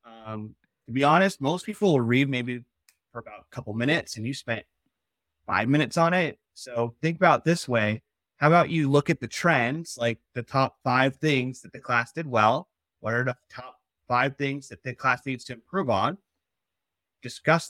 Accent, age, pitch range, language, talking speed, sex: American, 30-49, 110-145 Hz, English, 195 wpm, male